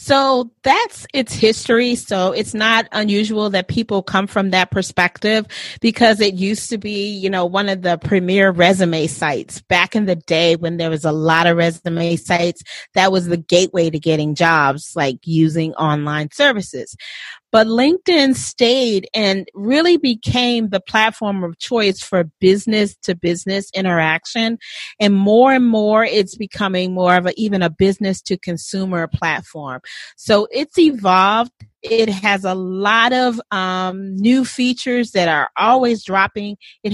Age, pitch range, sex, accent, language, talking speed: 40-59, 180-230 Hz, female, American, English, 150 wpm